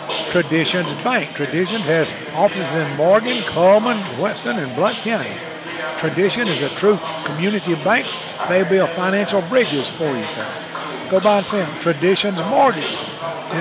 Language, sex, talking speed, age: English, male, 135 wpm, 60-79